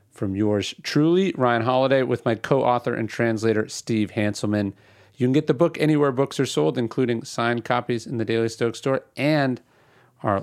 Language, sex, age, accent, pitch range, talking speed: English, male, 40-59, American, 120-155 Hz, 180 wpm